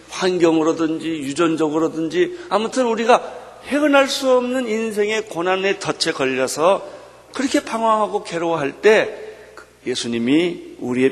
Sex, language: male, Korean